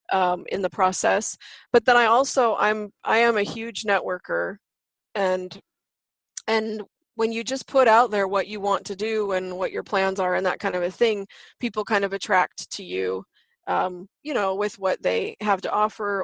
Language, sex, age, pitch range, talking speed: English, female, 20-39, 185-220 Hz, 195 wpm